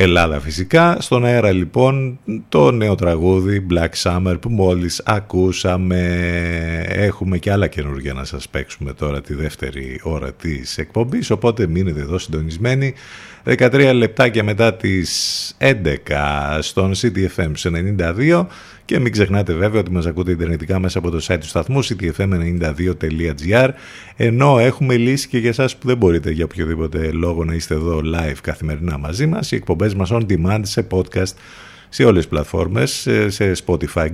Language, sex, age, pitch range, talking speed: Greek, male, 50-69, 85-110 Hz, 150 wpm